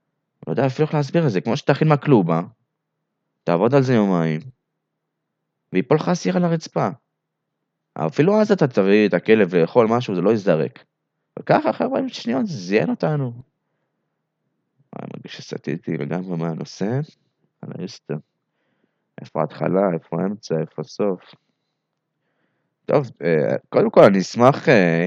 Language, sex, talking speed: Hebrew, male, 125 wpm